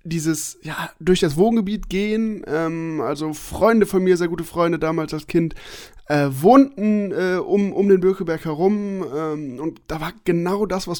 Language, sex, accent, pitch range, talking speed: German, male, German, 155-195 Hz, 175 wpm